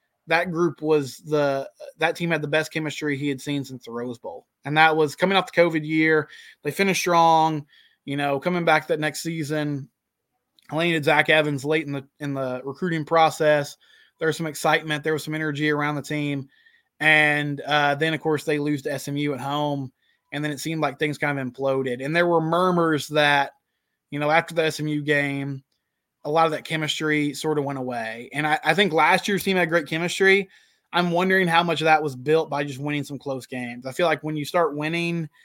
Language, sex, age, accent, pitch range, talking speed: English, male, 20-39, American, 140-160 Hz, 215 wpm